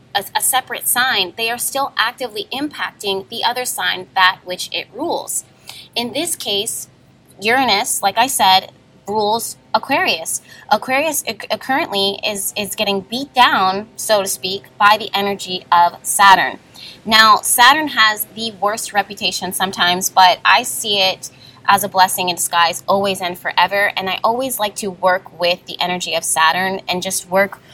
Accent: American